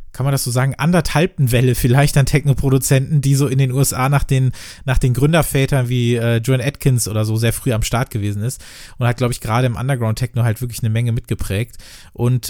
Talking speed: 225 wpm